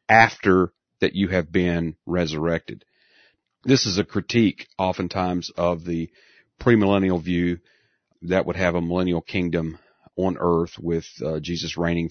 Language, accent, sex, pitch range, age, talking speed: English, American, male, 85-100 Hz, 40-59, 135 wpm